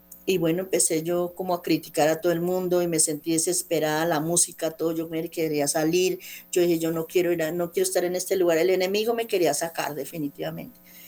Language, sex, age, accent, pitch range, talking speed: Spanish, female, 40-59, American, 160-180 Hz, 215 wpm